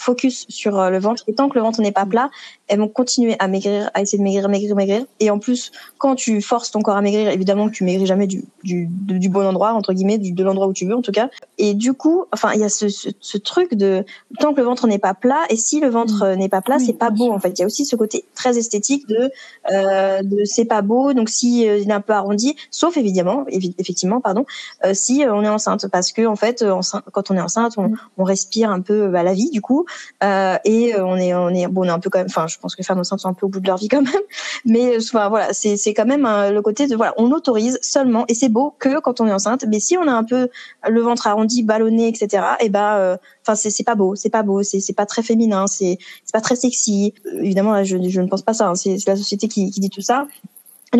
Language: French